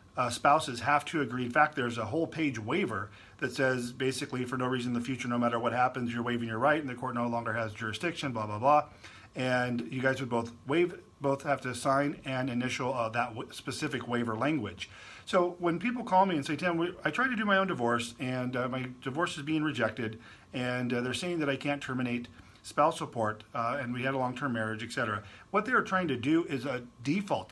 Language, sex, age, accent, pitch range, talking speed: English, male, 40-59, American, 120-145 Hz, 225 wpm